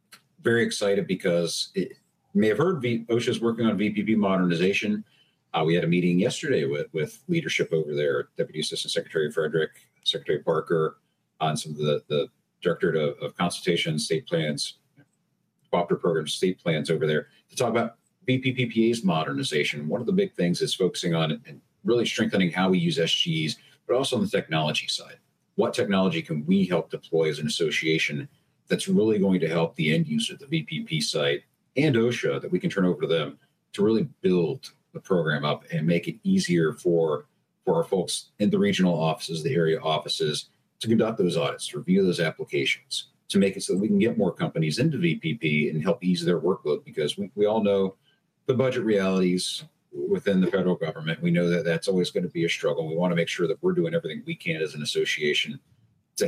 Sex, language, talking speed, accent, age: male, English, 195 wpm, American, 50-69